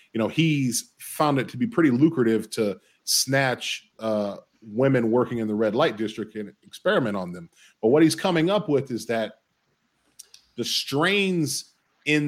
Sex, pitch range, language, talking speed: male, 110-140 Hz, English, 165 wpm